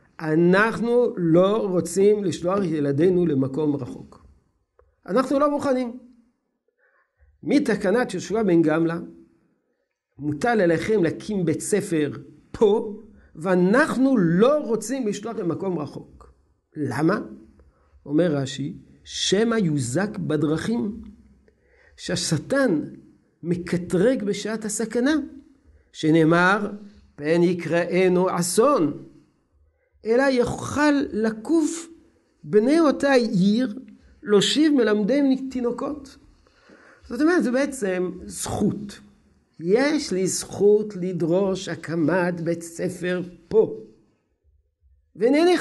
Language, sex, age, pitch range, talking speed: Hebrew, male, 50-69, 155-240 Hz, 85 wpm